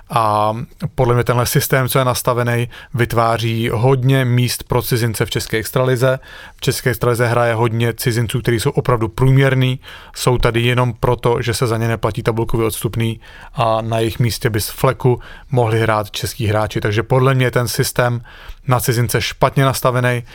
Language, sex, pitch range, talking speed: English, male, 115-125 Hz, 165 wpm